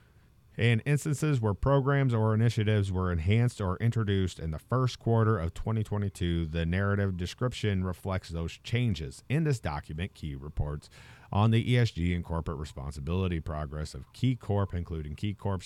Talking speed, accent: 155 wpm, American